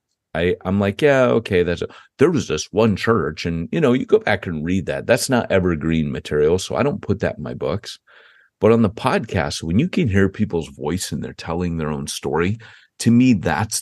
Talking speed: 225 wpm